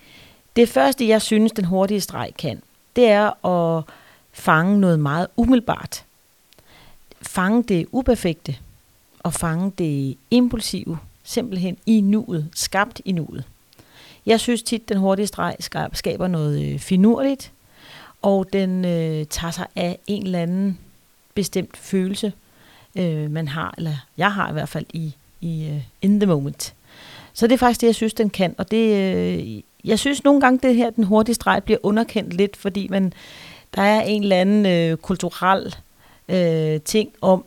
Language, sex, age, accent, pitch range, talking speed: Danish, female, 40-59, native, 160-215 Hz, 160 wpm